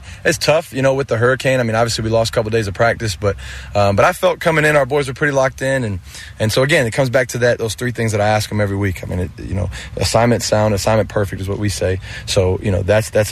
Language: English